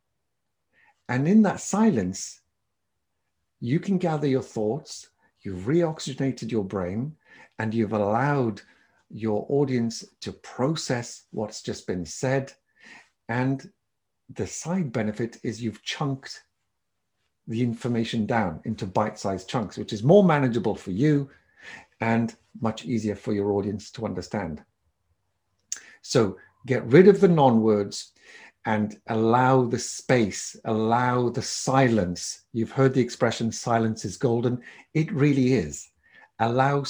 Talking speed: 120 wpm